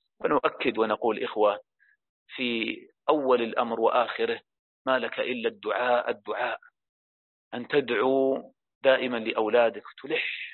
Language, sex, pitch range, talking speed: Arabic, male, 110-140 Hz, 95 wpm